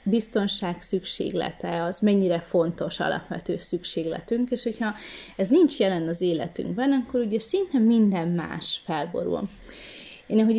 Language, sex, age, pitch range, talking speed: Hungarian, female, 20-39, 175-240 Hz, 125 wpm